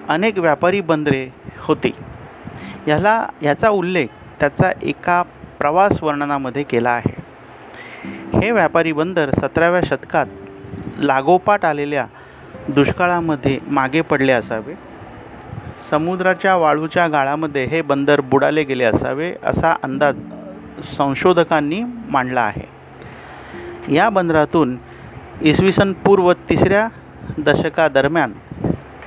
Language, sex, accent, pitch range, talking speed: Marathi, male, native, 135-170 Hz, 95 wpm